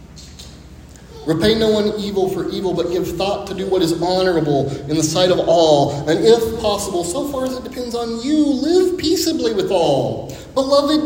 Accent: American